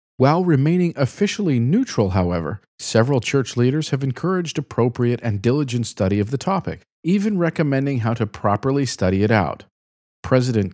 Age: 40-59